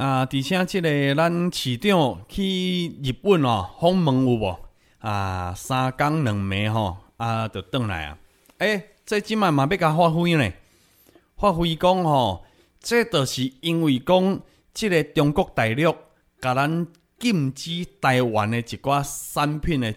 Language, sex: Chinese, male